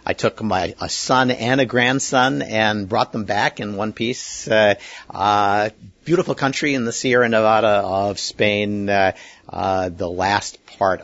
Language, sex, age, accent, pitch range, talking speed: English, male, 50-69, American, 85-120 Hz, 170 wpm